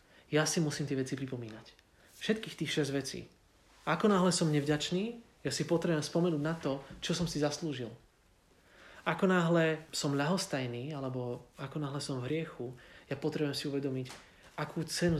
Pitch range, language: 125-160 Hz, Slovak